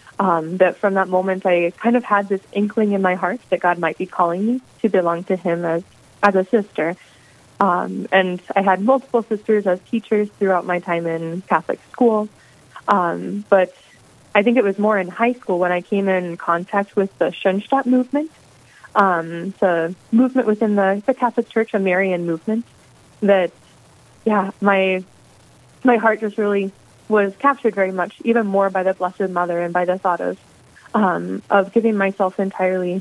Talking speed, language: 180 wpm, English